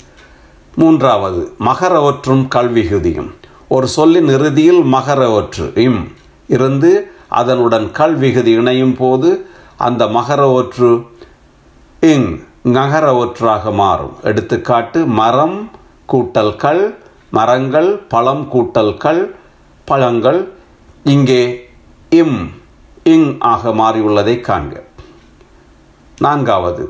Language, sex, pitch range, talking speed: Tamil, male, 120-165 Hz, 70 wpm